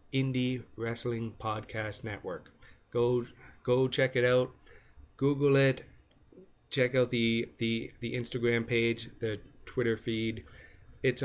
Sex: male